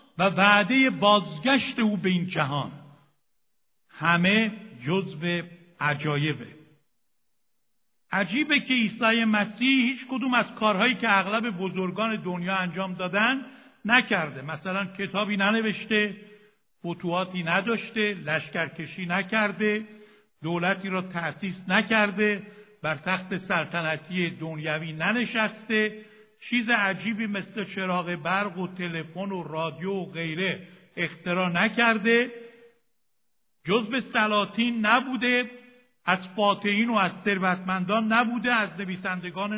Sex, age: male, 60-79